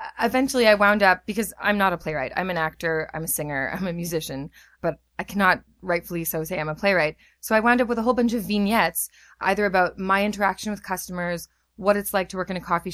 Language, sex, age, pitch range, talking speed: English, female, 20-39, 165-210 Hz, 235 wpm